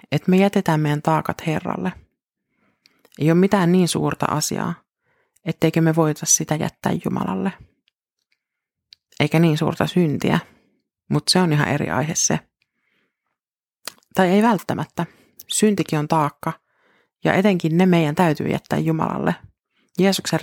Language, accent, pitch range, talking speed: Finnish, native, 160-190 Hz, 125 wpm